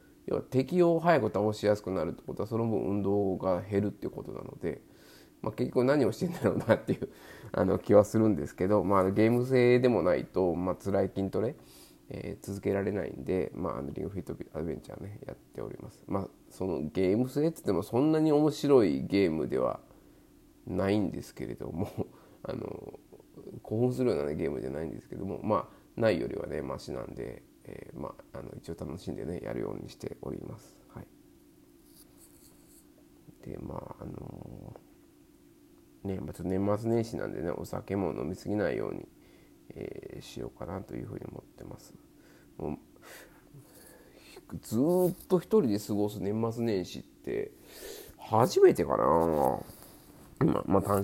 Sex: male